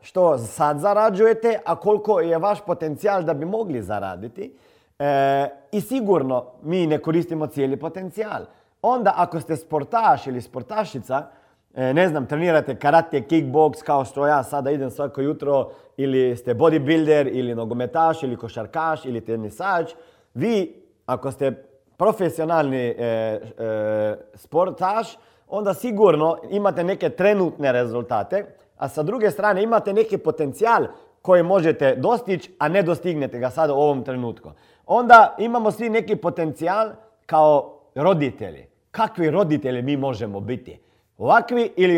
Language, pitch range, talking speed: Croatian, 135-205 Hz, 125 wpm